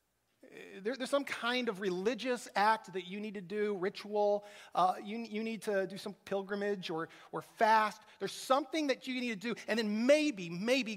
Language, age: English, 40-59